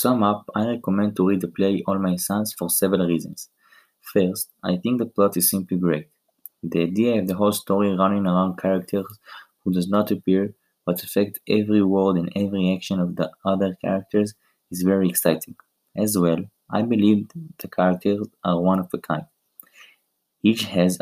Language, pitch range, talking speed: English, 90-105 Hz, 180 wpm